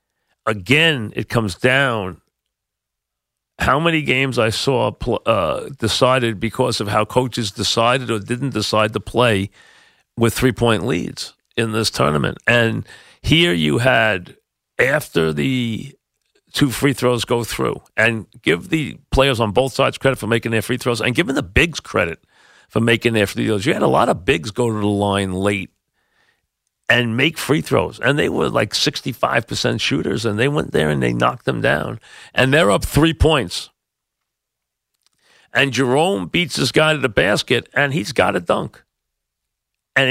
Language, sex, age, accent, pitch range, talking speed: English, male, 50-69, American, 105-135 Hz, 165 wpm